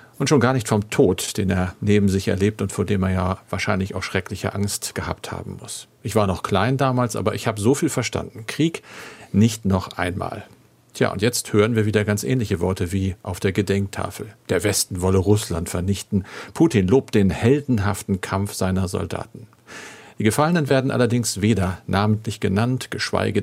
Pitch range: 100-120 Hz